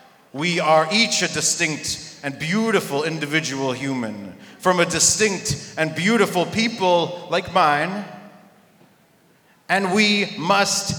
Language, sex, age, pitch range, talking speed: English, male, 40-59, 145-175 Hz, 110 wpm